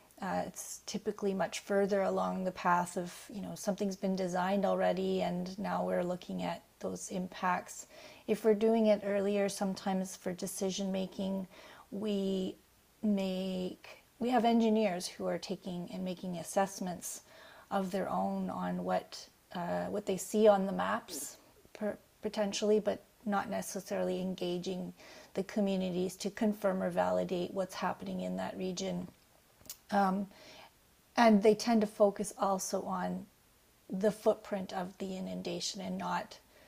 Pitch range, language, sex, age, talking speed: 185-210 Hz, English, female, 30-49, 135 wpm